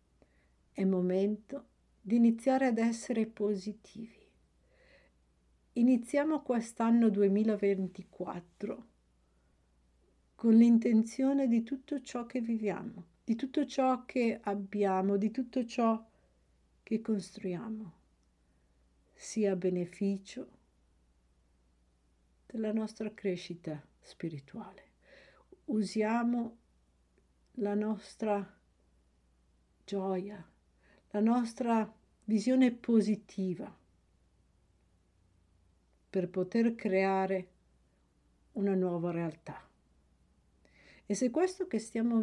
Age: 50-69